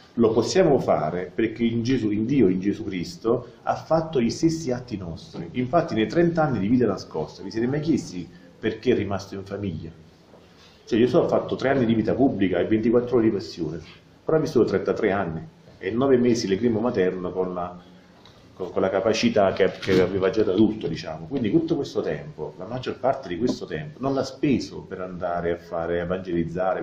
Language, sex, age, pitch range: Italian, male, 40-59, 90-130 Hz